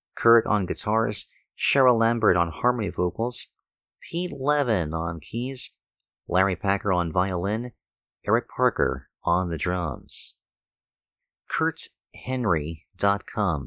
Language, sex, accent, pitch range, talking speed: English, male, American, 85-115 Hz, 95 wpm